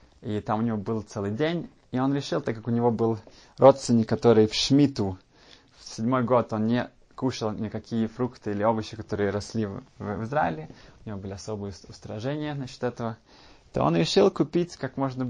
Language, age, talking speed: Russian, 20-39, 180 wpm